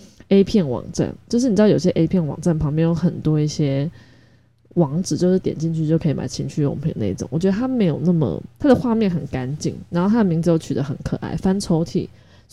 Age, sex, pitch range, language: 20-39, female, 145-195 Hz, Chinese